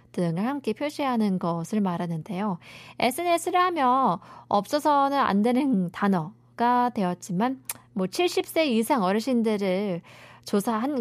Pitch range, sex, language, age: 185-260 Hz, female, Korean, 20-39